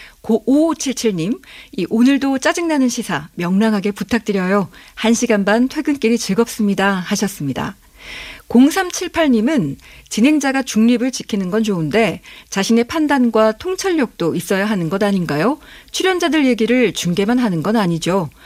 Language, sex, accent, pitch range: Korean, female, native, 195-265 Hz